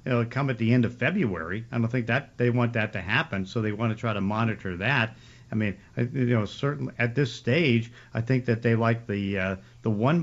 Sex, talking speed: male, 245 wpm